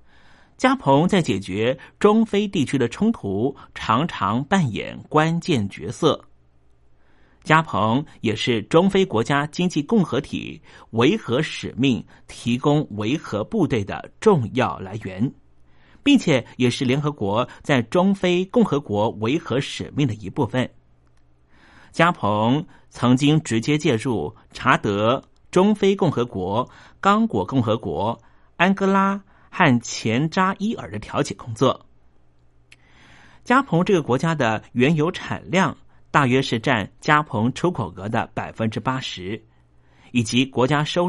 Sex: male